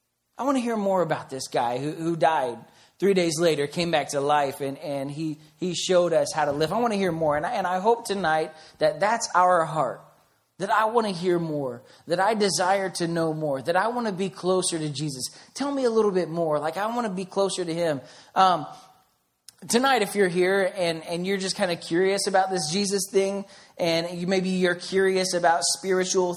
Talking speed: 225 wpm